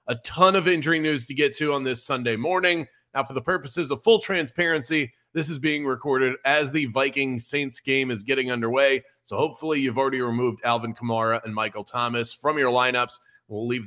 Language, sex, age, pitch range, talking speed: English, male, 30-49, 125-155 Hz, 200 wpm